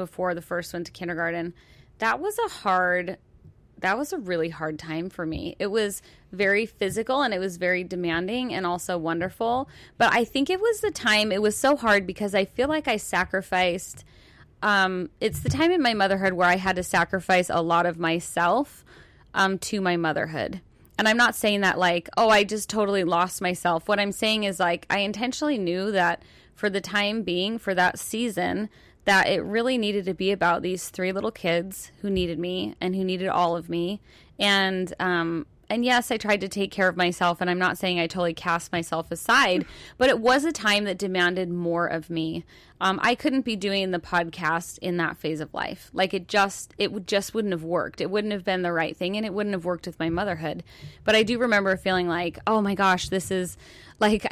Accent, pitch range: American, 175-210 Hz